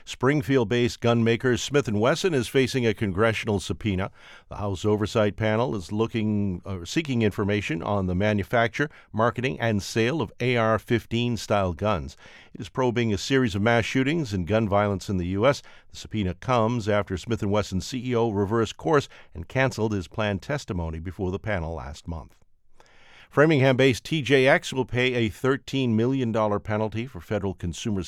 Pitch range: 100-125 Hz